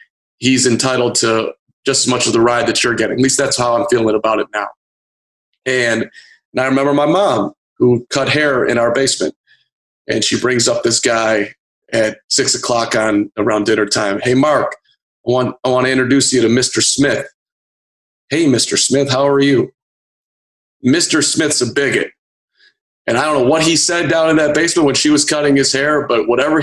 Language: English